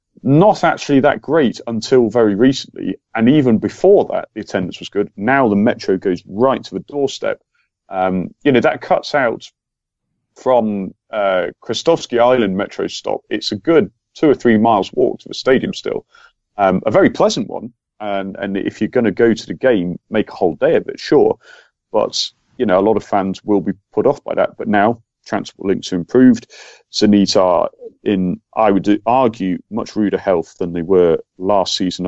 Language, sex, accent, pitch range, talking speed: English, male, British, 95-120 Hz, 190 wpm